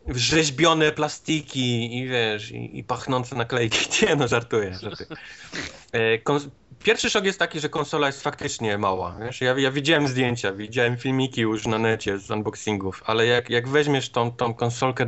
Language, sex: Polish, male